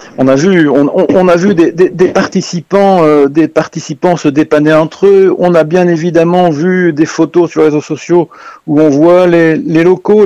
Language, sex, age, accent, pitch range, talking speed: French, male, 50-69, French, 130-160 Hz, 205 wpm